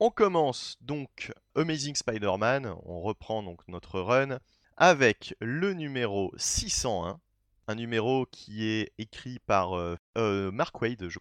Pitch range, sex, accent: 95-130 Hz, male, French